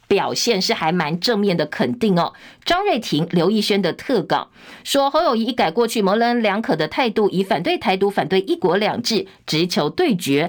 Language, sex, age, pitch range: Chinese, female, 50-69, 185-245 Hz